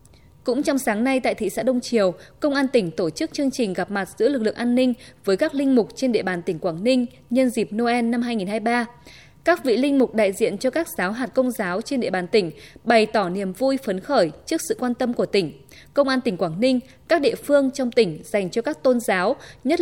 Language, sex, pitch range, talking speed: Vietnamese, female, 205-265 Hz, 250 wpm